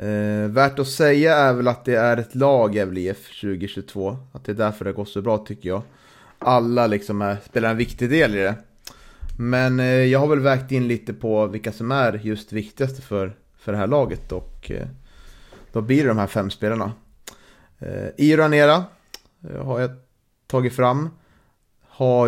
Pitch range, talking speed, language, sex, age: 105-125 Hz, 190 wpm, Swedish, male, 30-49